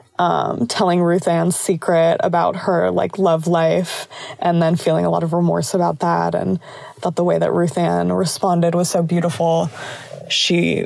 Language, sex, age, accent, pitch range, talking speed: English, female, 20-39, American, 165-185 Hz, 165 wpm